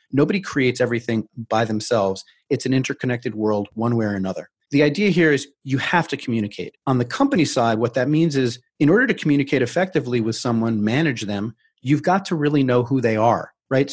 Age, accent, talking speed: 30-49, American, 200 wpm